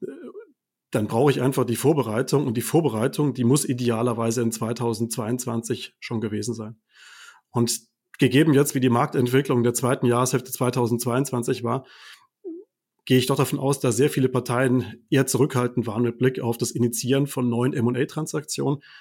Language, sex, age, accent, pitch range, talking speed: German, male, 30-49, German, 120-145 Hz, 150 wpm